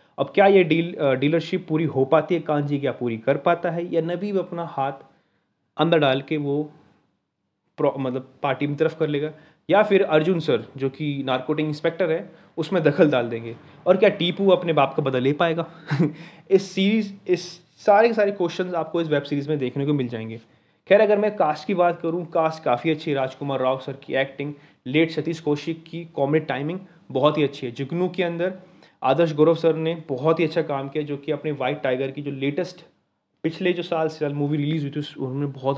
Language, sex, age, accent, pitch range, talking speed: Hindi, male, 30-49, native, 140-175 Hz, 210 wpm